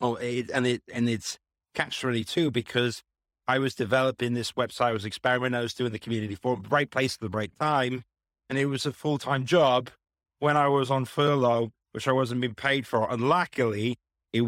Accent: British